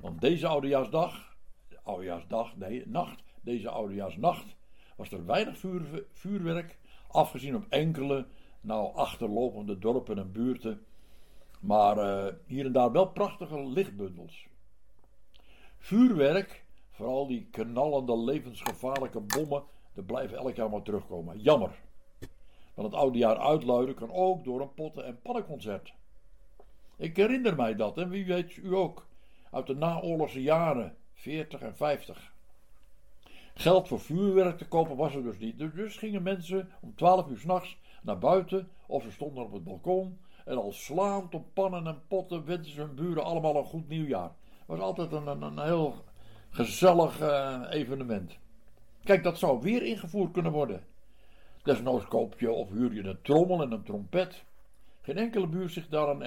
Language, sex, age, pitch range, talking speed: Dutch, male, 60-79, 115-180 Hz, 150 wpm